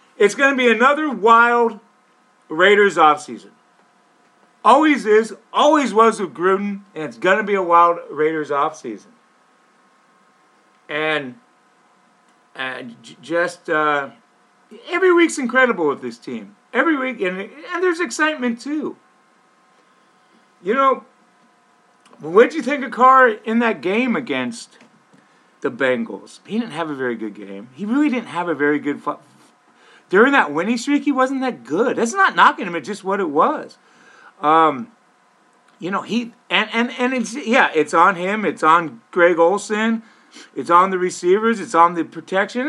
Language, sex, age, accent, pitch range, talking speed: English, male, 50-69, American, 170-250 Hz, 155 wpm